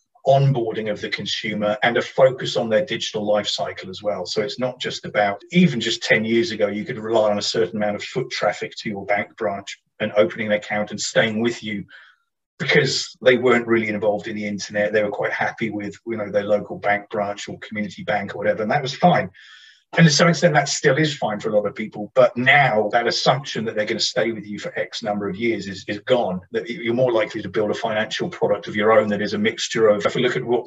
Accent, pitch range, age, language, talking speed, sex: British, 105-115 Hz, 30-49, English, 250 wpm, male